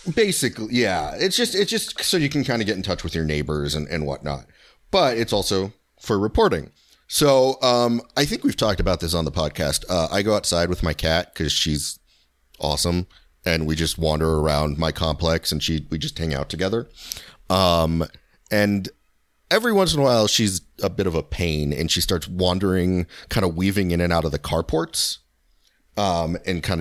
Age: 30-49